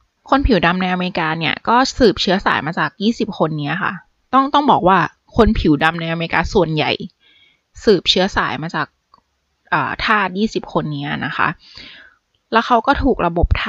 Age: 20-39